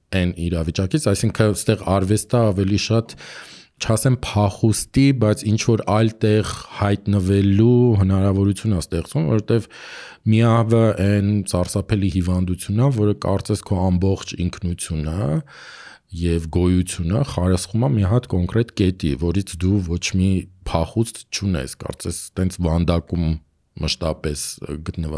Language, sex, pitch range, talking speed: English, male, 90-110 Hz, 60 wpm